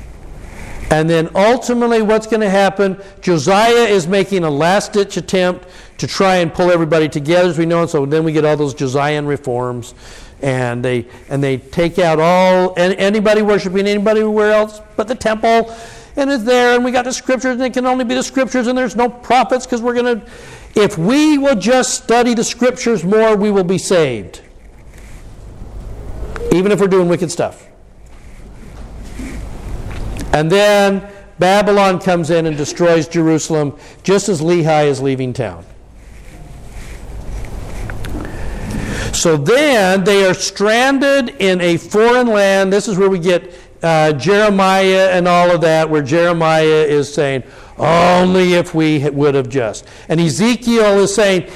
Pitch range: 150-205 Hz